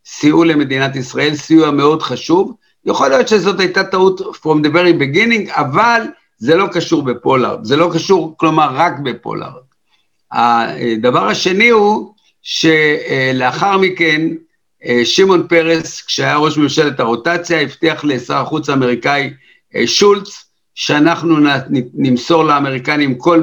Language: Hebrew